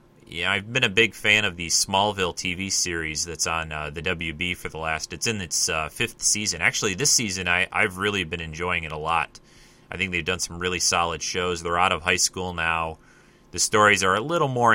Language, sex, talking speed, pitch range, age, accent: English, male, 230 wpm, 85-105 Hz, 30-49, American